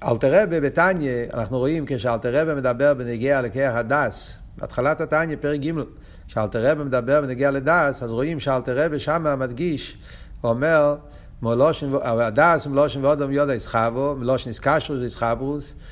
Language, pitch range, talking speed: Hebrew, 120-150 Hz, 120 wpm